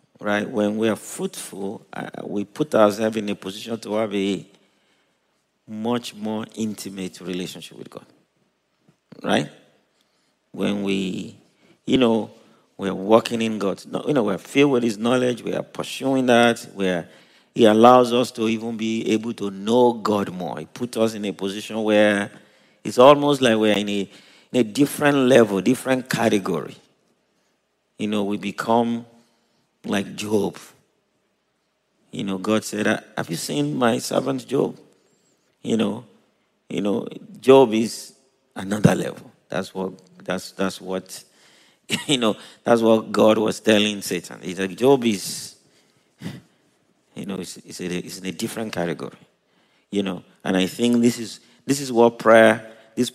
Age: 50-69